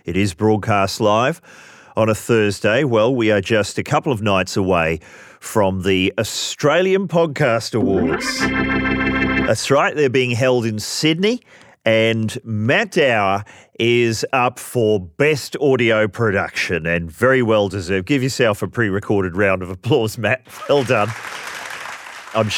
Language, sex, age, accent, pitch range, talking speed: English, male, 40-59, Australian, 100-140 Hz, 140 wpm